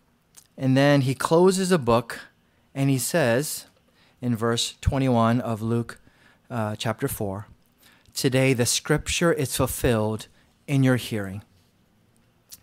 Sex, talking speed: male, 120 wpm